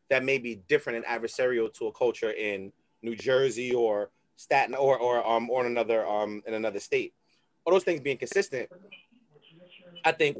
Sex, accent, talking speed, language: male, American, 180 wpm, English